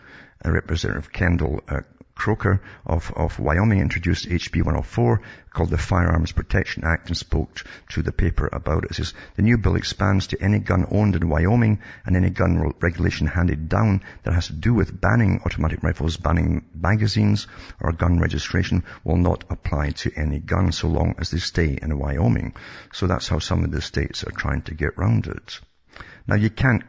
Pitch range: 80-100 Hz